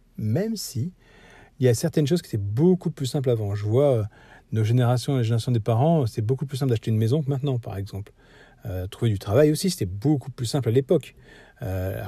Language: French